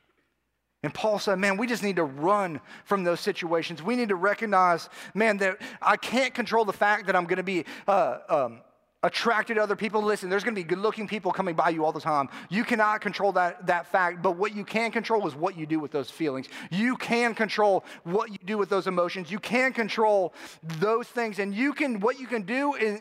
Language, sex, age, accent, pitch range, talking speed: English, male, 30-49, American, 175-230 Hz, 225 wpm